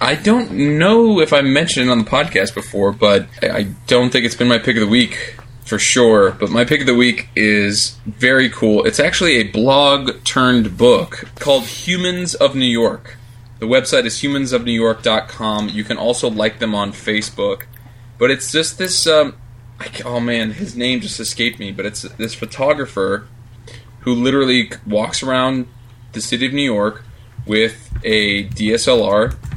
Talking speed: 170 wpm